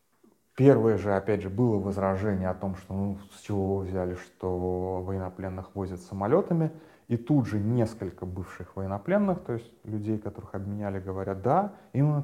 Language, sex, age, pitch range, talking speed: Russian, male, 30-49, 95-115 Hz, 150 wpm